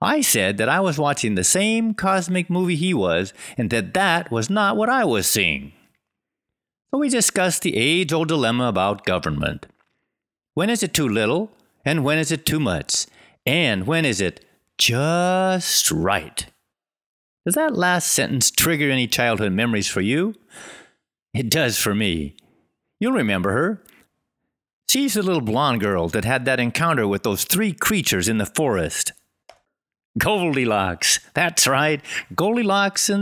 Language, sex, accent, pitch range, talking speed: English, male, American, 120-200 Hz, 150 wpm